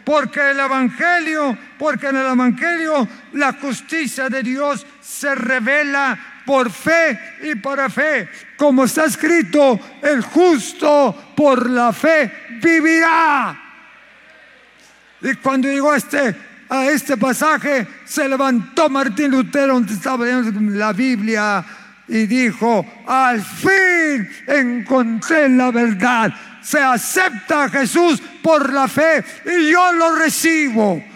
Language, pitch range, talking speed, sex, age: Spanish, 215-290 Hz, 115 wpm, male, 50-69